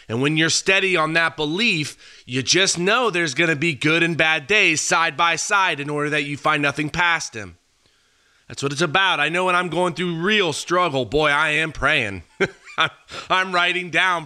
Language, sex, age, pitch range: English, male, 30-49, 140-180 Hz